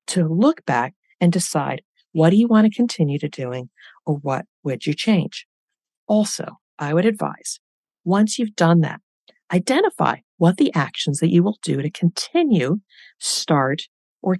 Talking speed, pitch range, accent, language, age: 160 wpm, 150-200 Hz, American, English, 50-69